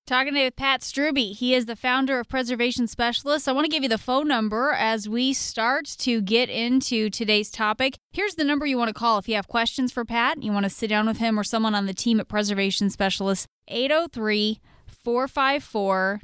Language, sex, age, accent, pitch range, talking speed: English, female, 20-39, American, 205-245 Hz, 220 wpm